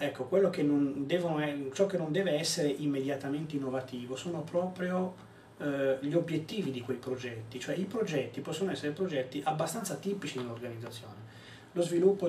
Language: Italian